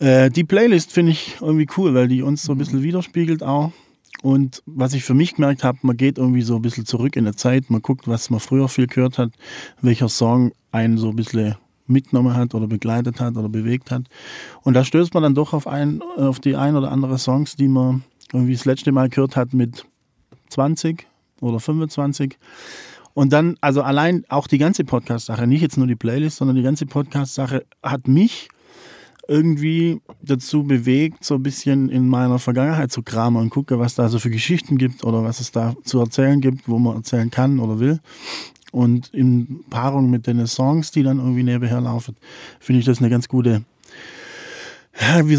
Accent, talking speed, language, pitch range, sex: German, 195 wpm, German, 125-150 Hz, male